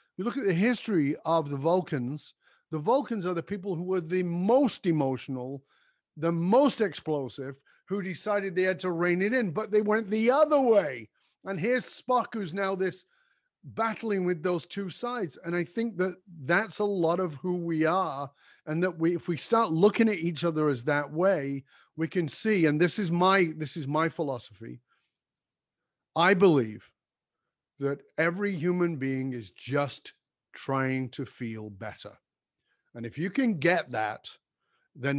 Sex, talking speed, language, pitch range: male, 170 wpm, English, 140-190 Hz